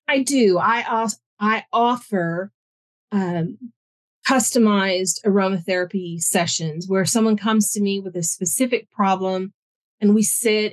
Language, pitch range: English, 180-215 Hz